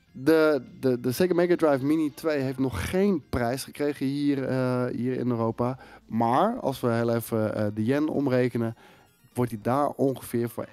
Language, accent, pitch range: Dutch, Dutch, 115-145 Hz